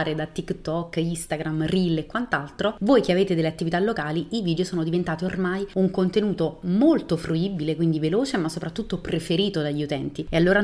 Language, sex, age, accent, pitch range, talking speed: Italian, female, 30-49, native, 165-200 Hz, 170 wpm